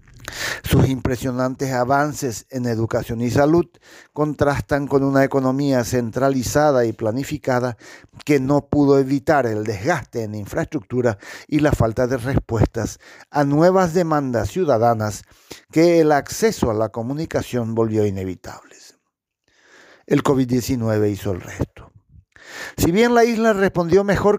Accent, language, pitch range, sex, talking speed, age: Mexican, Spanish, 115-155 Hz, male, 125 wpm, 50-69